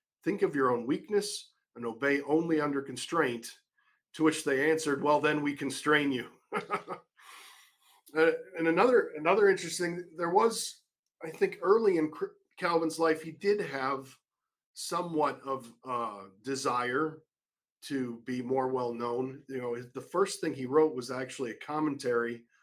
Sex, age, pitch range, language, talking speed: male, 40-59, 125-155 Hz, English, 145 wpm